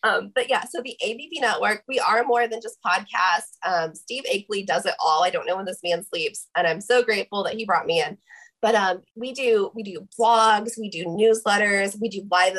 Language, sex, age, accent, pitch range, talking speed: English, female, 20-39, American, 185-245 Hz, 230 wpm